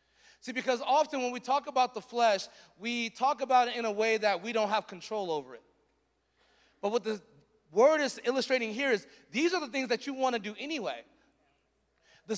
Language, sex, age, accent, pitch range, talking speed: English, male, 30-49, American, 220-270 Hz, 205 wpm